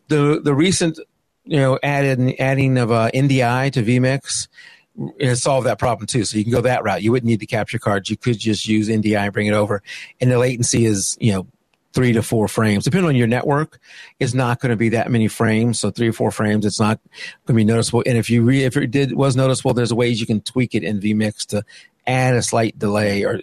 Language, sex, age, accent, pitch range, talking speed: English, male, 50-69, American, 110-135 Hz, 240 wpm